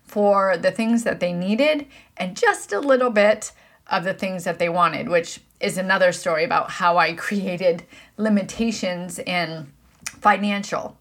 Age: 30-49